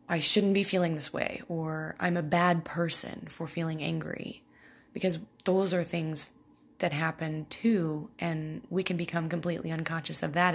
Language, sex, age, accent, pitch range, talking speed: English, female, 20-39, American, 160-185 Hz, 165 wpm